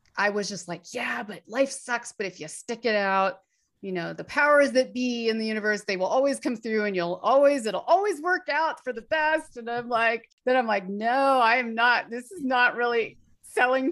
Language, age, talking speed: English, 30-49, 225 wpm